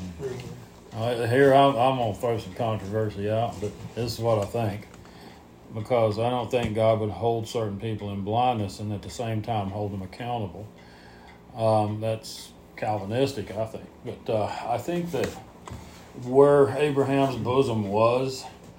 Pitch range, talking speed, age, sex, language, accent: 100-115 Hz, 145 wpm, 40-59, male, English, American